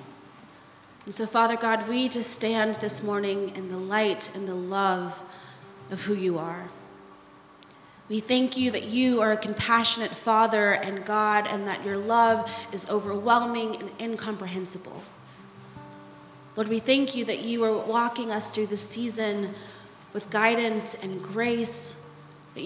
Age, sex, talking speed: 30-49, female, 145 wpm